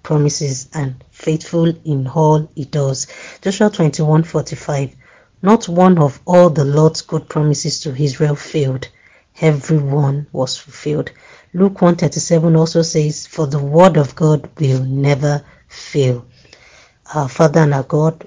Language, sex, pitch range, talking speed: English, female, 140-160 Hz, 140 wpm